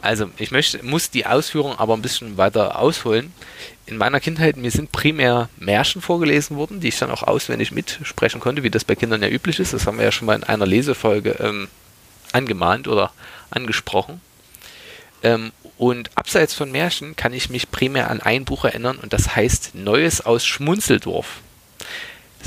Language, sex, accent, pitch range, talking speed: German, male, German, 105-130 Hz, 180 wpm